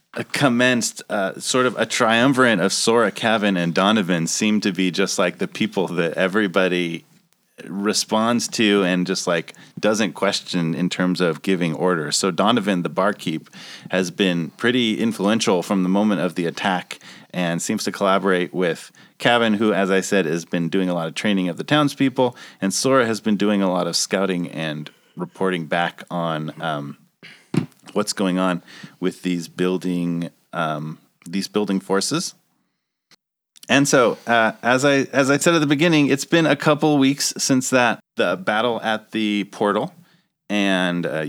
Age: 30-49